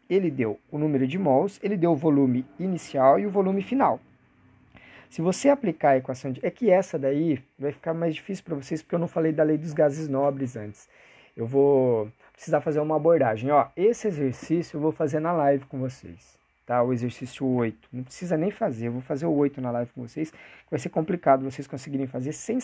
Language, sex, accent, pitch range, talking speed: Portuguese, male, Brazilian, 130-160 Hz, 210 wpm